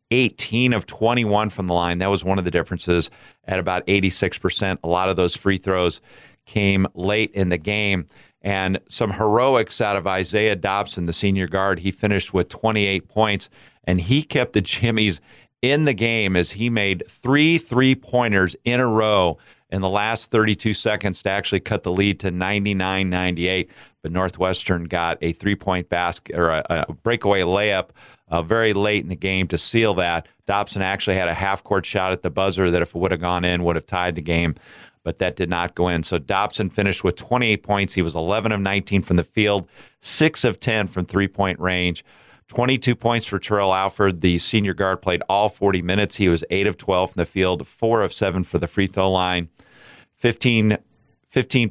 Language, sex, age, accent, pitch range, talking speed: English, male, 40-59, American, 90-105 Hz, 200 wpm